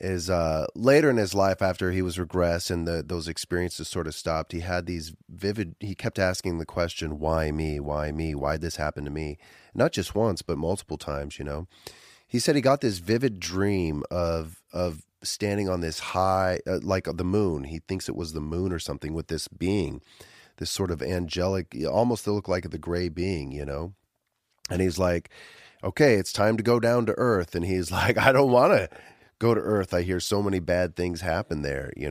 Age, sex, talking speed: 30-49, male, 215 wpm